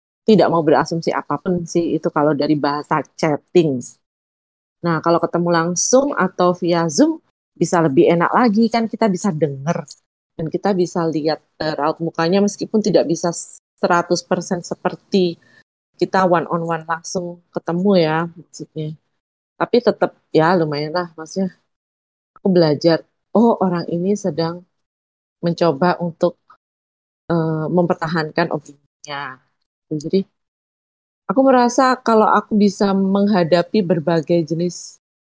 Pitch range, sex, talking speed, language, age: 155-185 Hz, female, 120 wpm, Indonesian, 20-39